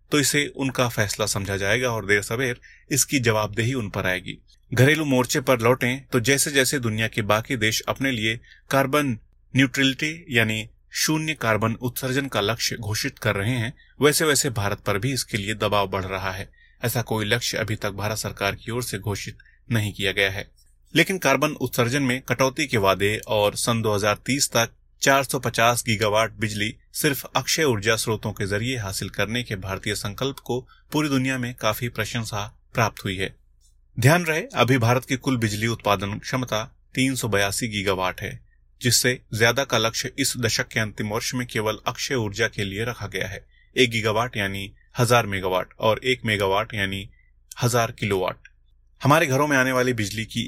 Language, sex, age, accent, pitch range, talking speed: Hindi, male, 30-49, native, 105-130 Hz, 175 wpm